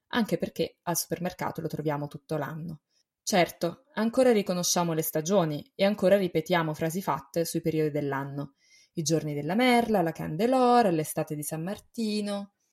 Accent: native